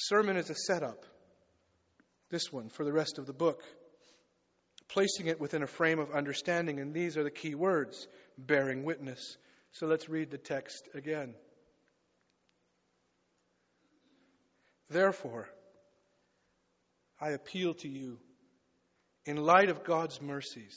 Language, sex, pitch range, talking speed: English, male, 145-195 Hz, 125 wpm